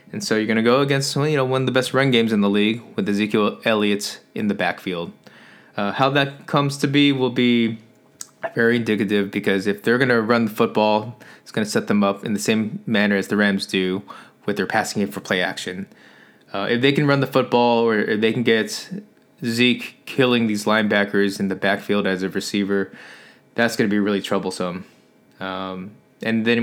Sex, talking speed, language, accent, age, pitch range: male, 205 wpm, English, American, 20-39, 105-130 Hz